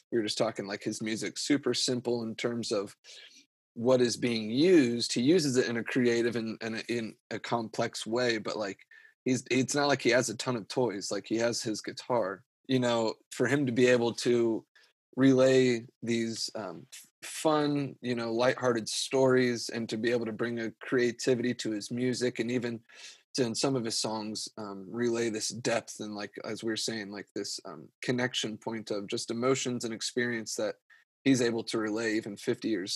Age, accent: 30-49, American